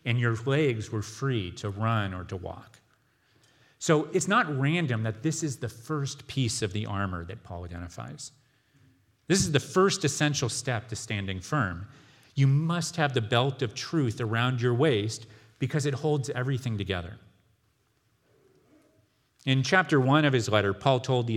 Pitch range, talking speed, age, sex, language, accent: 105-135 Hz, 165 wpm, 40-59, male, English, American